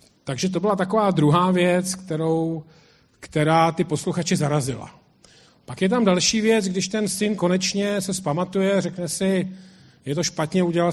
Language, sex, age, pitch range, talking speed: Czech, male, 40-59, 150-185 Hz, 155 wpm